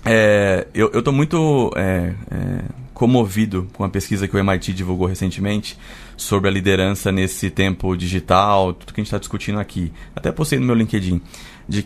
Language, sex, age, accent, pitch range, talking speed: Portuguese, male, 20-39, Brazilian, 100-120 Hz, 160 wpm